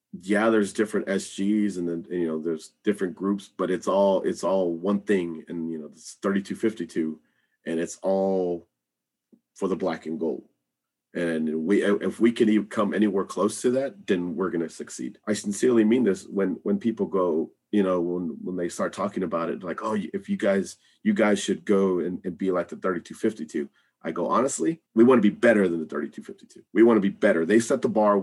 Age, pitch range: 40-59, 90-110 Hz